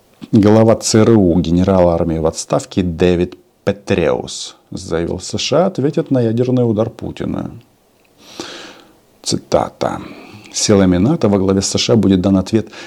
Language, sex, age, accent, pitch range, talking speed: Russian, male, 40-59, native, 90-110 Hz, 110 wpm